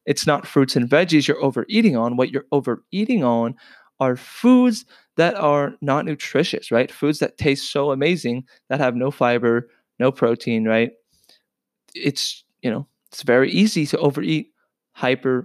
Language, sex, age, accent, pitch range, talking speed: English, male, 20-39, American, 125-155 Hz, 155 wpm